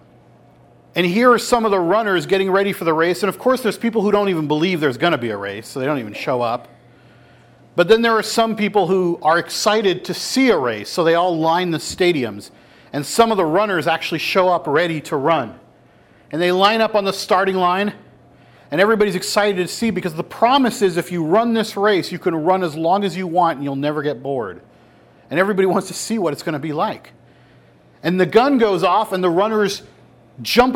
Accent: American